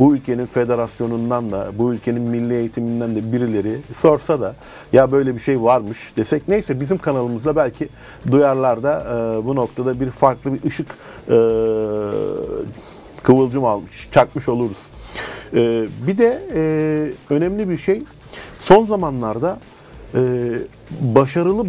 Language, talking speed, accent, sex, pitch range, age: Turkish, 130 wpm, native, male, 115-155 Hz, 50-69